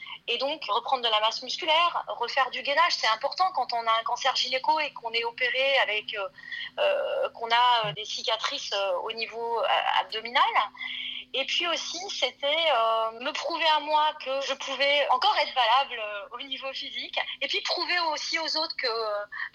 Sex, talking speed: female, 180 wpm